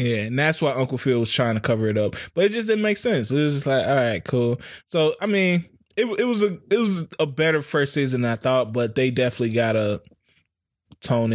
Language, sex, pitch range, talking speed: English, male, 105-135 Hz, 245 wpm